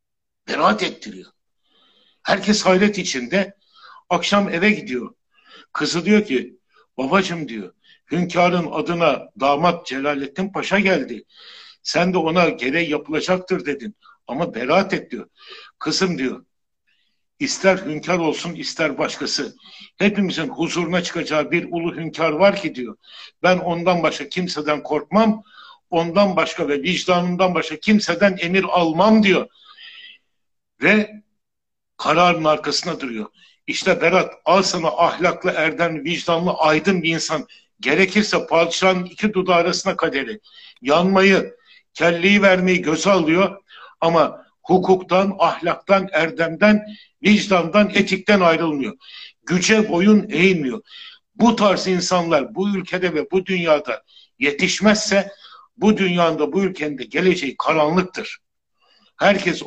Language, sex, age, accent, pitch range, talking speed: Turkish, male, 60-79, native, 160-200 Hz, 110 wpm